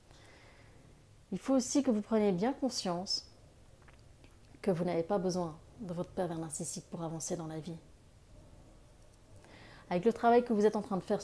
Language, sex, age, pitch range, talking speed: French, female, 30-49, 125-200 Hz, 170 wpm